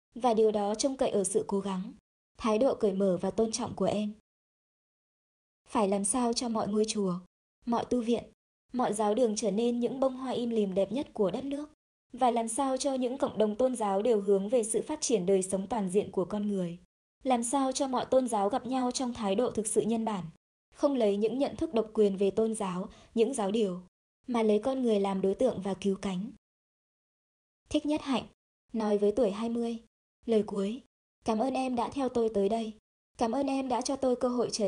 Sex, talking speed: male, 225 wpm